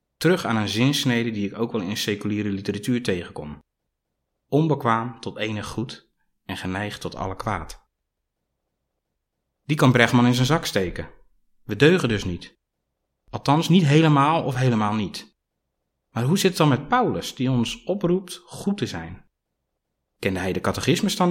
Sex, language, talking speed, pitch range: male, Dutch, 160 wpm, 100-140 Hz